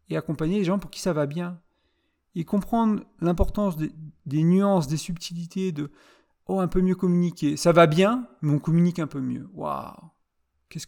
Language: French